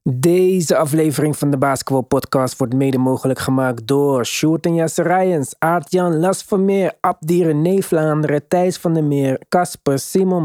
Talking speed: 150 wpm